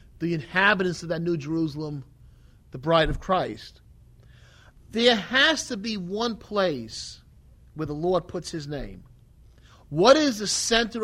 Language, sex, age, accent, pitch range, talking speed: English, male, 40-59, American, 170-230 Hz, 140 wpm